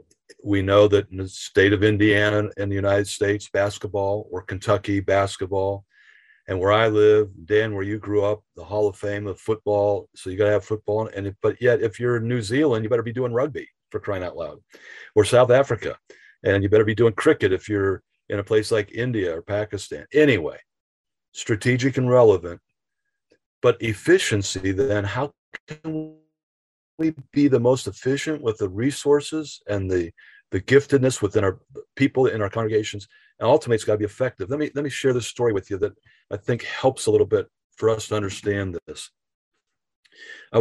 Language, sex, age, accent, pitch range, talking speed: English, male, 50-69, American, 100-125 Hz, 190 wpm